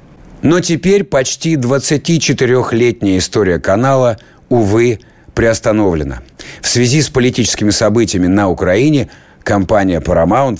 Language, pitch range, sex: Russian, 90-120 Hz, male